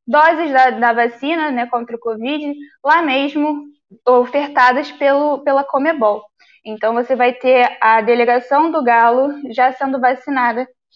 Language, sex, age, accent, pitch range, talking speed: Portuguese, female, 10-29, Brazilian, 240-310 Hz, 135 wpm